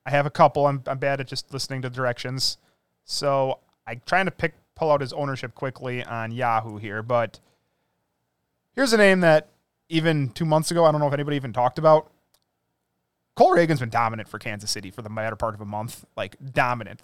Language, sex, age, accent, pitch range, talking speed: English, male, 30-49, American, 125-155 Hz, 205 wpm